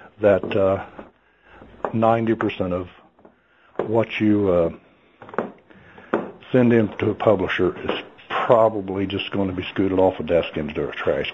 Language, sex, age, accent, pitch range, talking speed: English, male, 60-79, American, 95-115 Hz, 130 wpm